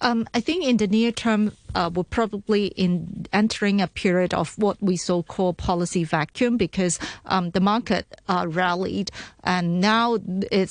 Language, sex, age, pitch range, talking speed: English, female, 40-59, 185-215 Hz, 175 wpm